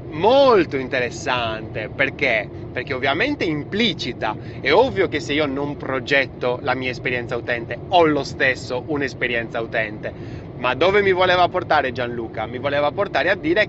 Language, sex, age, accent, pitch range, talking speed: Italian, male, 30-49, native, 125-165 Hz, 150 wpm